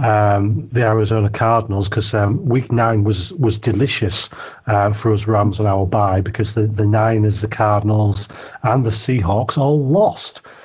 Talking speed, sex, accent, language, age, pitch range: 170 wpm, male, British, English, 40-59, 110-130 Hz